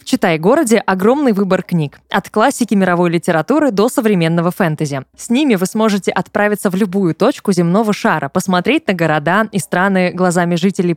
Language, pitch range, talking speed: Russian, 175-230 Hz, 160 wpm